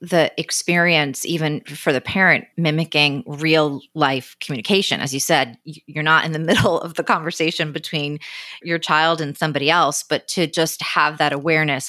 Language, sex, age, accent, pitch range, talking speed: English, female, 30-49, American, 145-170 Hz, 165 wpm